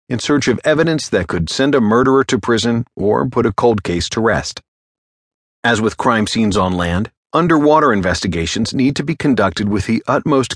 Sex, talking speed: male, 190 wpm